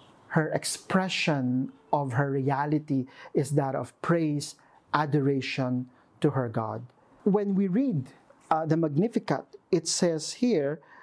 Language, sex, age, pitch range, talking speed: English, male, 40-59, 145-185 Hz, 120 wpm